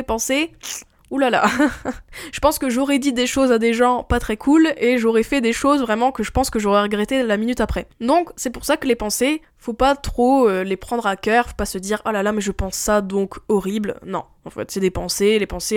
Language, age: French, 10-29